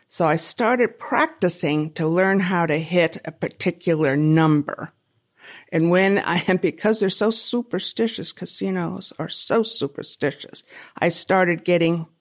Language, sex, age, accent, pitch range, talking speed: English, female, 60-79, American, 160-225 Hz, 135 wpm